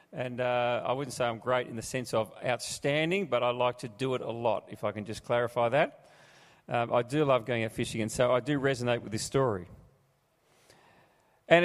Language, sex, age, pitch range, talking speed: English, male, 40-59, 135-175 Hz, 215 wpm